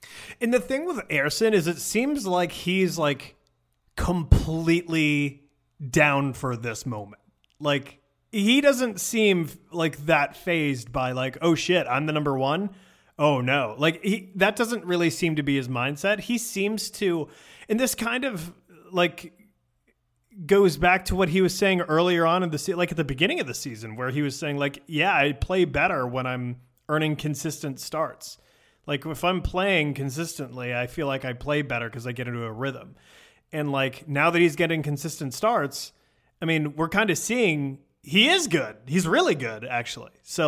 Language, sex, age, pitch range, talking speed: English, male, 30-49, 140-180 Hz, 180 wpm